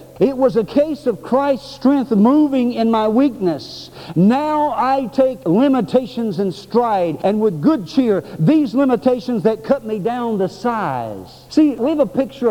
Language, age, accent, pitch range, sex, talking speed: English, 60-79, American, 165-265 Hz, male, 160 wpm